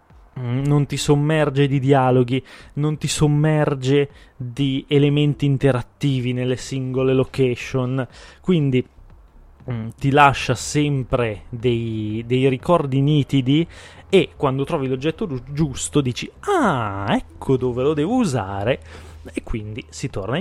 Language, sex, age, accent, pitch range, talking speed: Italian, male, 20-39, native, 120-150 Hz, 110 wpm